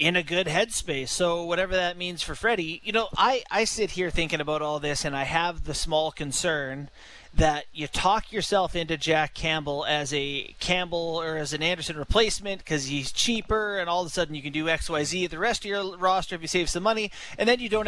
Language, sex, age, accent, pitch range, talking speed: English, male, 30-49, American, 150-185 Hz, 230 wpm